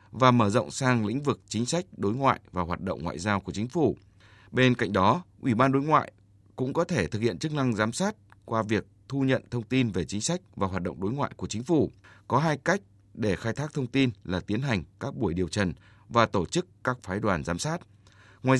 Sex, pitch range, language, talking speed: male, 100-130 Hz, Vietnamese, 240 wpm